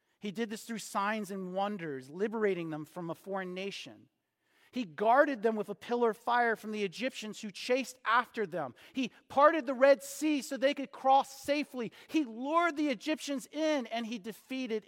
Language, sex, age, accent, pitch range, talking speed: English, male, 40-59, American, 175-235 Hz, 185 wpm